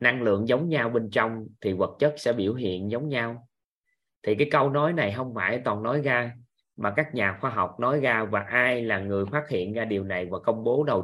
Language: Vietnamese